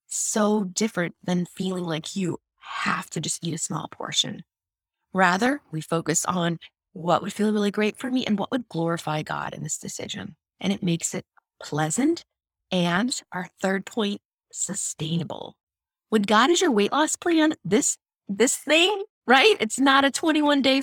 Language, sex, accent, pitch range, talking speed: English, female, American, 180-250 Hz, 165 wpm